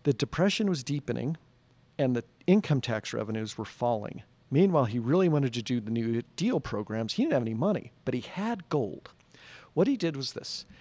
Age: 50-69